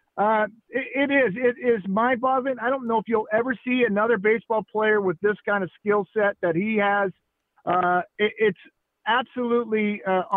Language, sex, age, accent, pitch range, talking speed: English, male, 50-69, American, 200-245 Hz, 175 wpm